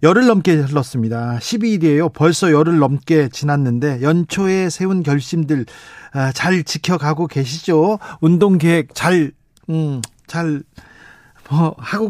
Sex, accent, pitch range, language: male, native, 140-175 Hz, Korean